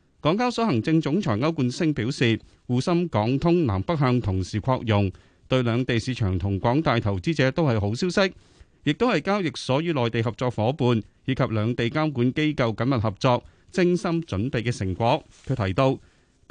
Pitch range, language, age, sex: 110-165 Hz, Chinese, 30-49, male